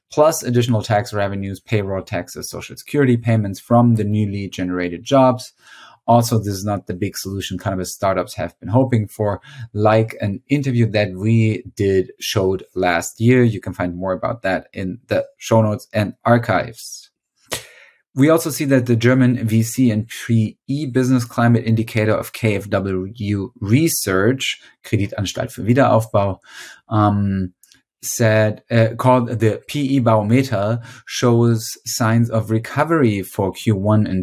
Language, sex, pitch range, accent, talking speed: English, male, 100-120 Hz, German, 140 wpm